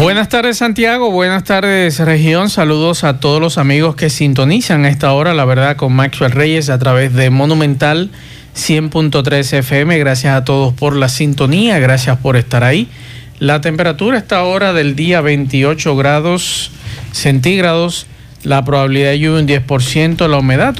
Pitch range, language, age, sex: 135-165 Hz, Spanish, 50-69, male